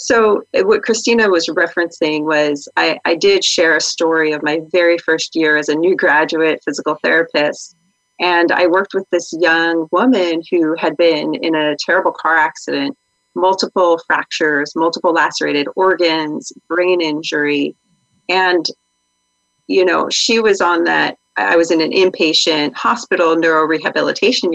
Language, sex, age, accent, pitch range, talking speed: English, female, 30-49, American, 160-190 Hz, 145 wpm